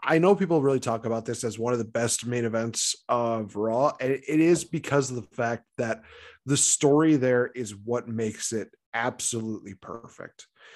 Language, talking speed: English, 185 wpm